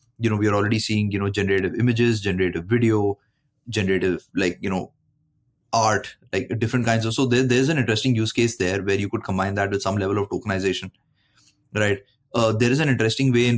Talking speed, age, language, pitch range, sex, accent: 205 wpm, 20-39, English, 110-130 Hz, male, Indian